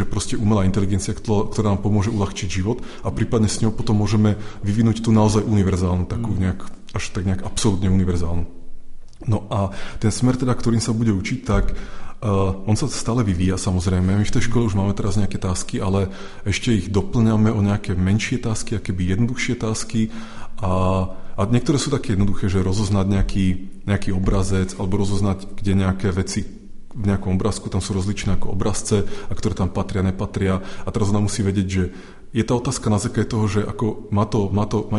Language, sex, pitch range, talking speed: Czech, male, 95-110 Hz, 180 wpm